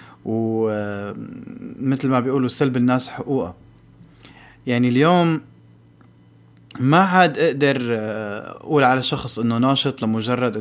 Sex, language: male, Arabic